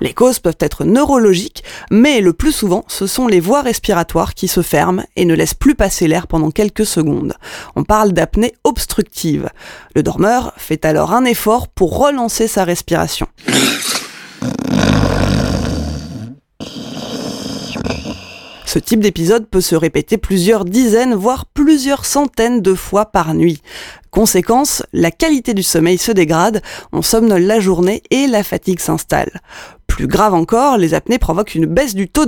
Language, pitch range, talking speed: French, 175-240 Hz, 150 wpm